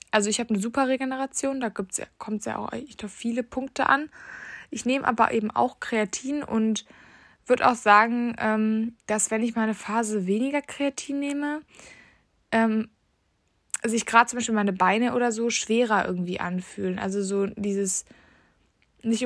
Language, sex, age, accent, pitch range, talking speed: German, female, 20-39, German, 200-235 Hz, 160 wpm